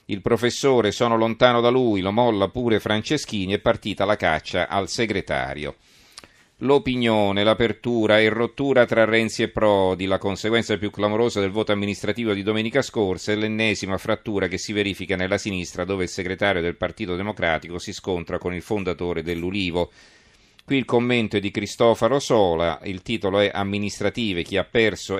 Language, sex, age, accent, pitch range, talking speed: Italian, male, 40-59, native, 95-110 Hz, 160 wpm